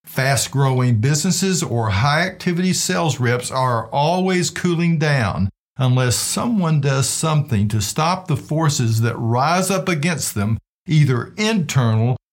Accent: American